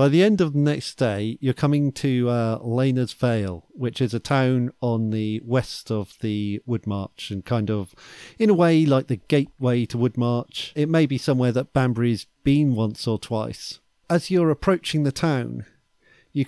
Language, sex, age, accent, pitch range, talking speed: English, male, 40-59, British, 120-150 Hz, 185 wpm